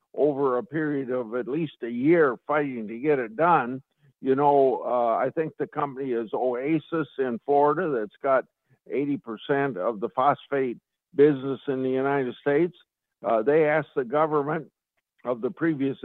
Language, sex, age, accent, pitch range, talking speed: English, male, 60-79, American, 130-155 Hz, 160 wpm